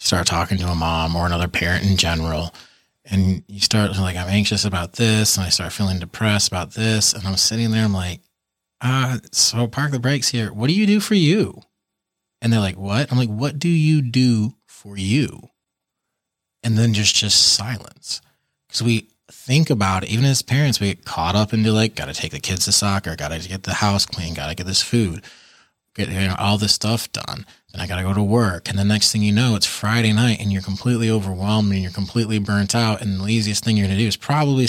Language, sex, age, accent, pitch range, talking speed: English, male, 20-39, American, 100-120 Hz, 230 wpm